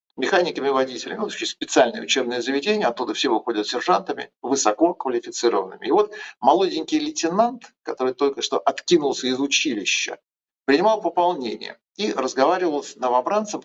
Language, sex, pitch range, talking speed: Russian, male, 130-215 Hz, 120 wpm